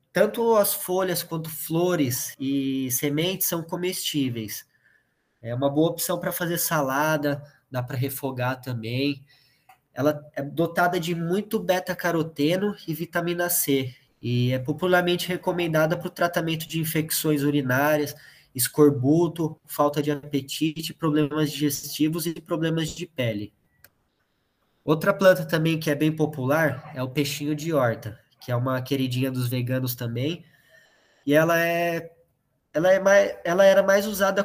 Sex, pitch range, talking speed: male, 135-170 Hz, 135 wpm